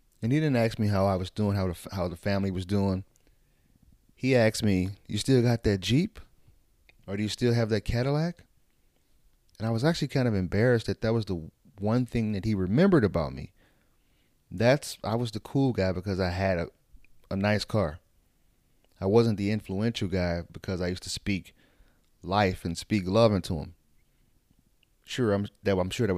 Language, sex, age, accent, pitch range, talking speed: English, male, 30-49, American, 90-110 Hz, 195 wpm